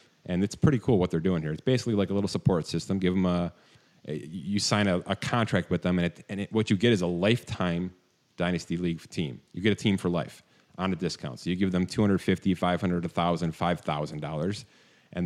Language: English